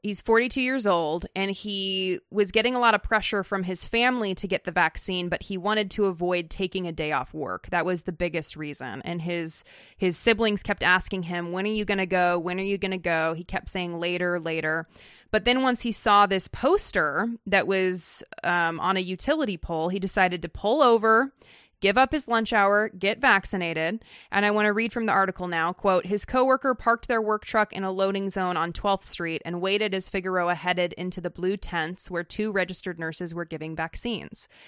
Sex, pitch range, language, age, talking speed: female, 175-215 Hz, English, 20-39, 215 wpm